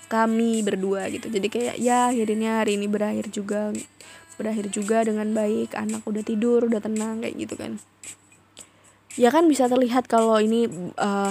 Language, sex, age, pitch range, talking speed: English, female, 20-39, 195-225 Hz, 160 wpm